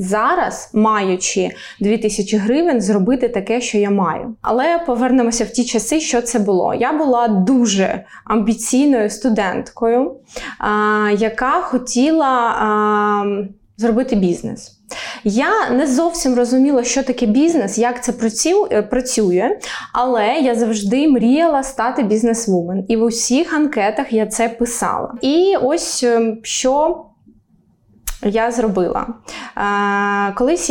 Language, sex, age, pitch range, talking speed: Ukrainian, female, 20-39, 210-260 Hz, 115 wpm